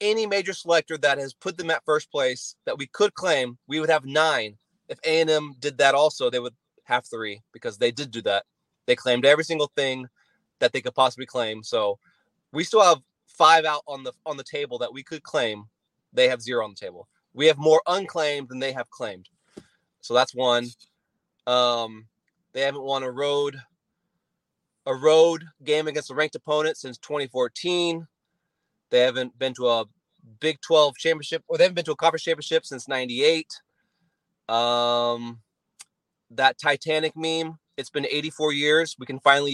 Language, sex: English, male